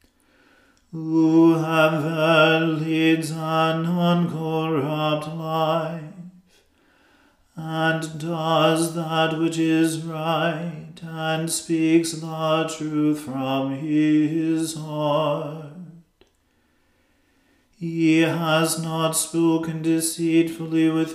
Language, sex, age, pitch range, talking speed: English, male, 40-59, 155-165 Hz, 70 wpm